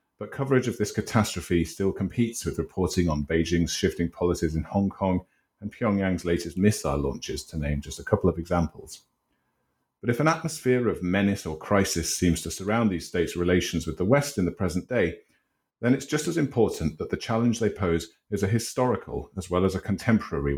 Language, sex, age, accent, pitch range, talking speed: English, male, 40-59, British, 85-115 Hz, 195 wpm